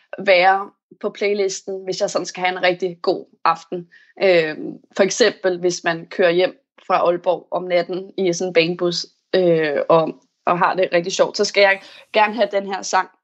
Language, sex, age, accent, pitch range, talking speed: Danish, female, 20-39, native, 185-220 Hz, 190 wpm